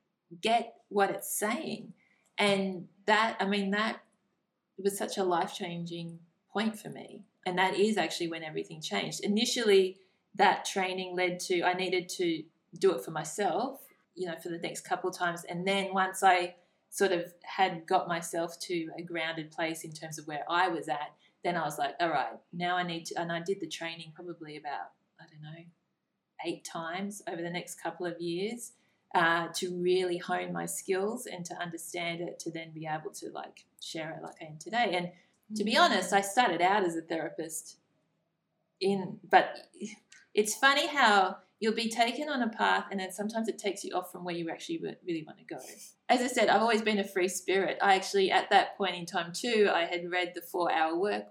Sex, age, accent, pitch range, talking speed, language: female, 20-39, Australian, 170-205 Hz, 200 wpm, English